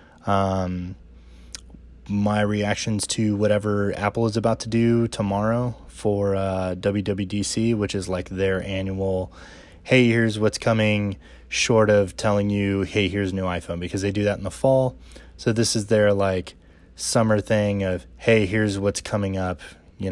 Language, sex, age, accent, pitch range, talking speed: English, male, 20-39, American, 90-105 Hz, 160 wpm